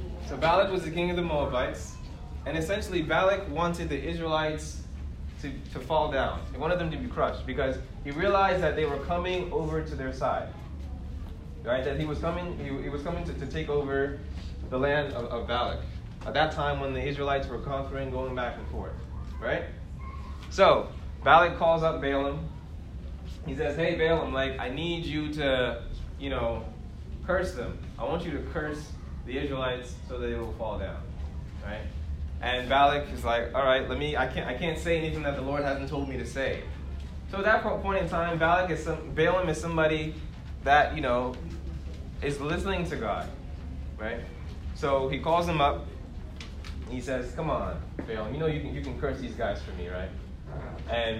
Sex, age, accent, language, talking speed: male, 20-39, American, English, 190 wpm